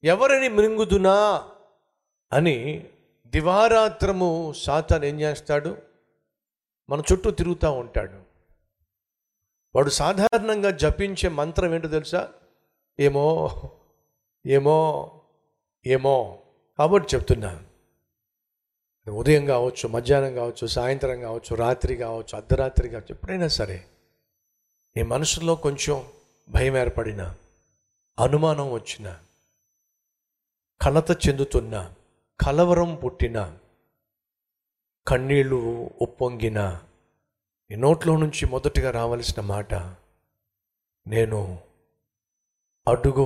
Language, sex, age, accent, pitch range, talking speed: Telugu, male, 50-69, native, 100-150 Hz, 75 wpm